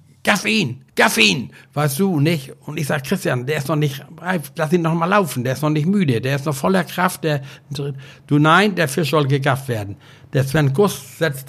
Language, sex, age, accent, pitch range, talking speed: German, male, 60-79, German, 140-175 Hz, 220 wpm